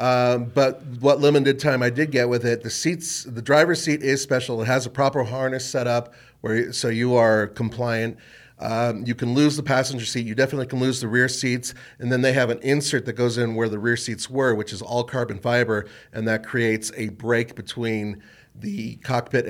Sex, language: male, English